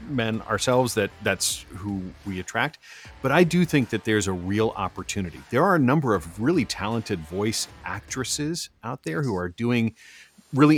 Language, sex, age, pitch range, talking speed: English, male, 40-59, 95-135 Hz, 175 wpm